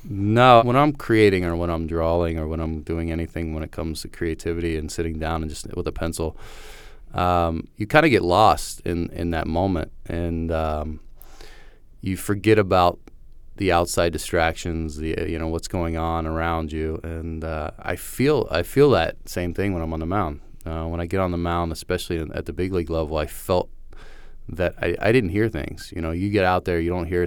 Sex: male